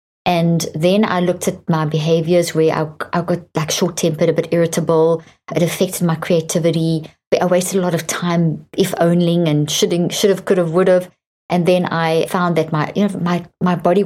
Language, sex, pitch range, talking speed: English, female, 160-190 Hz, 205 wpm